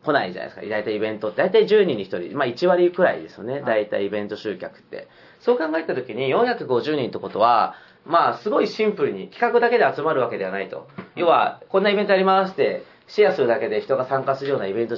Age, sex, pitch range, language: 40-59, male, 125-205 Hz, Japanese